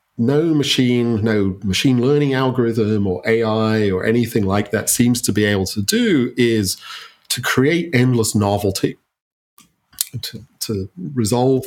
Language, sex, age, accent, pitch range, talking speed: English, male, 40-59, British, 105-130 Hz, 135 wpm